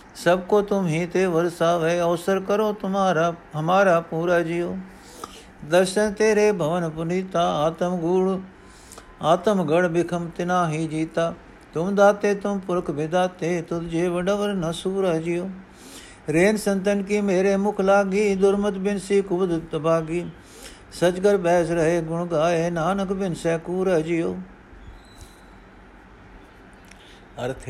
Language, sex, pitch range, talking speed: Punjabi, male, 130-175 Hz, 115 wpm